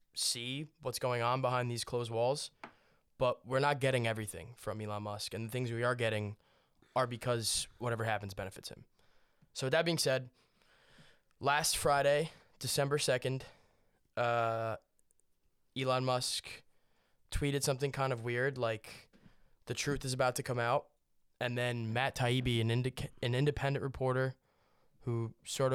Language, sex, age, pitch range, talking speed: English, male, 20-39, 120-140 Hz, 150 wpm